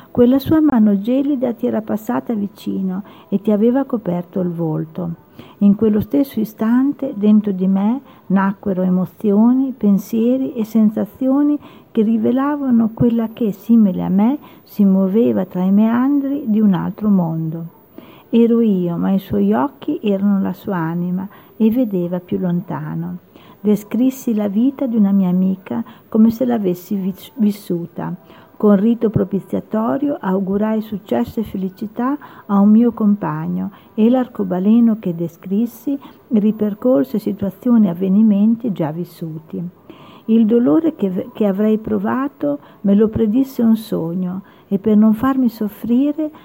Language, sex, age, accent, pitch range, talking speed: Italian, female, 50-69, native, 190-235 Hz, 135 wpm